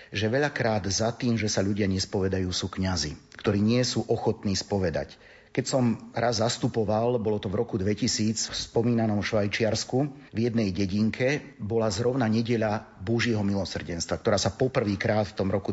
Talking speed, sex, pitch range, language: 155 wpm, male, 100-115 Hz, Slovak